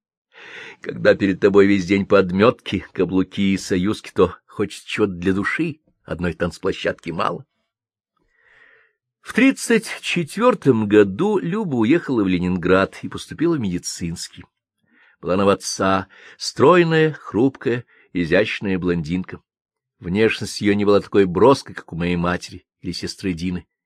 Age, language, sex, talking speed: 50-69, Russian, male, 125 wpm